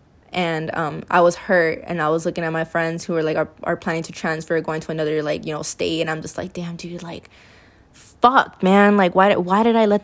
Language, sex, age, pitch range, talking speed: English, female, 20-39, 155-180 Hz, 250 wpm